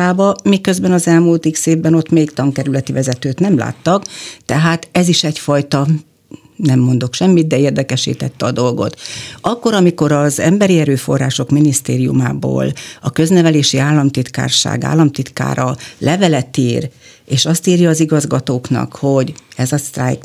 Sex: female